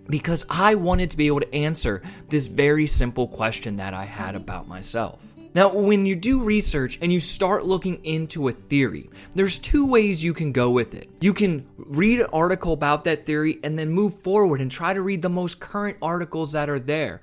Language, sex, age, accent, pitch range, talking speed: English, male, 20-39, American, 135-185 Hz, 210 wpm